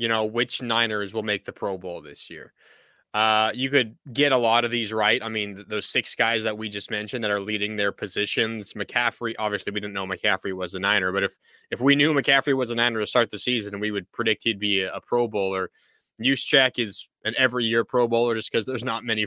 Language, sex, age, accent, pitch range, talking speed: English, male, 20-39, American, 105-120 Hz, 235 wpm